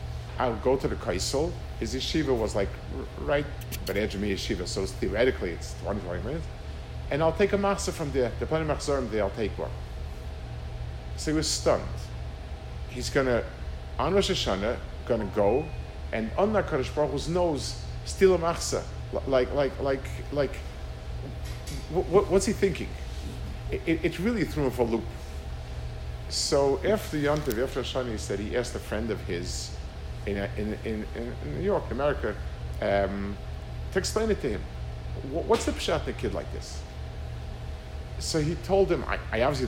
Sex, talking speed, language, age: male, 155 wpm, English, 50-69